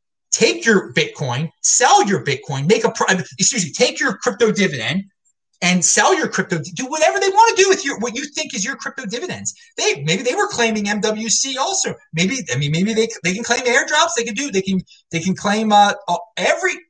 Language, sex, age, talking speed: English, male, 30-49, 215 wpm